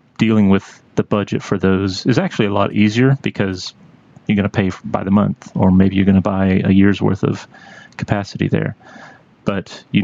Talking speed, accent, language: 195 wpm, American, English